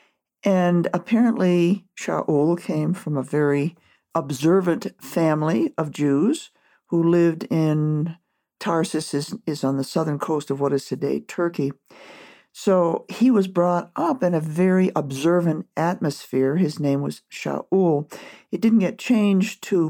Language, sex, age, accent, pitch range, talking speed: English, male, 50-69, American, 140-175 Hz, 135 wpm